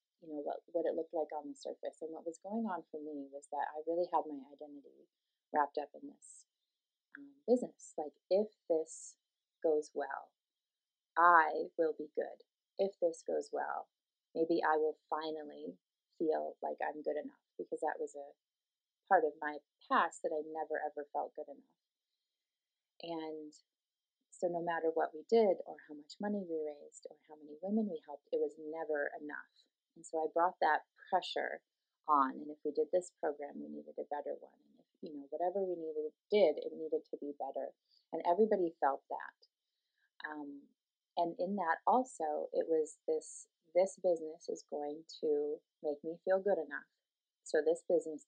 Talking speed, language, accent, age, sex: 180 wpm, English, American, 30-49, female